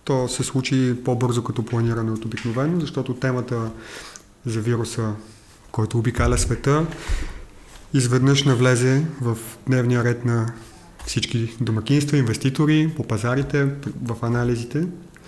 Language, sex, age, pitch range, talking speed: English, male, 30-49, 115-145 Hz, 110 wpm